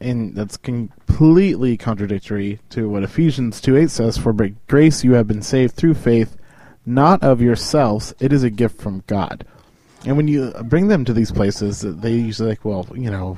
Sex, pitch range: male, 110-140 Hz